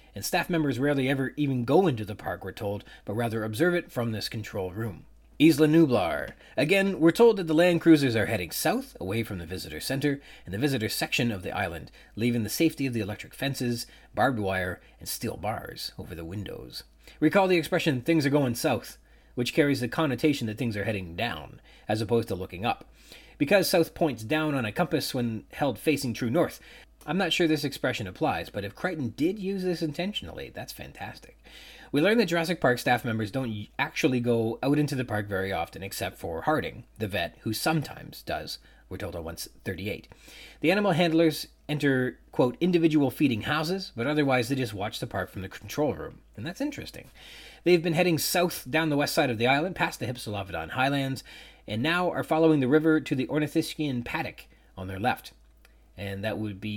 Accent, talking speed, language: American, 200 wpm, English